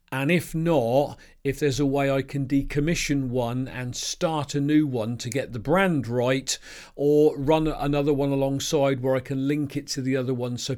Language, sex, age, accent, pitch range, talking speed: English, male, 50-69, British, 130-175 Hz, 200 wpm